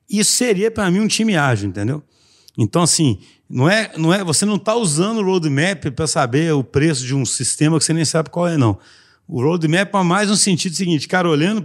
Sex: male